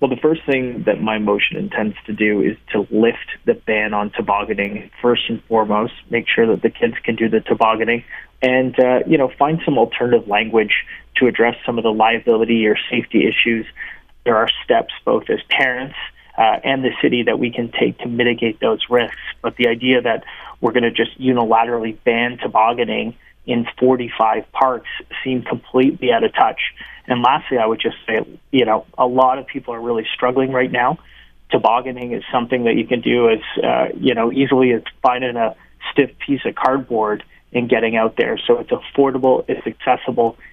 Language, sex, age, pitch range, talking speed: English, male, 30-49, 115-130 Hz, 190 wpm